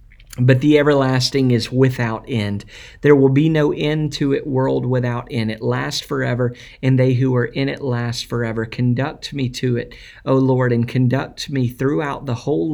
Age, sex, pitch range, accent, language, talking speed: 50-69, male, 120-135 Hz, American, English, 185 wpm